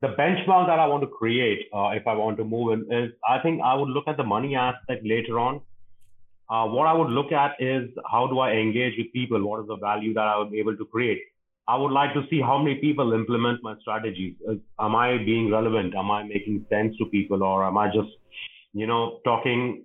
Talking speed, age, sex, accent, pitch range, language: 240 wpm, 30-49, male, Indian, 110-135 Hz, English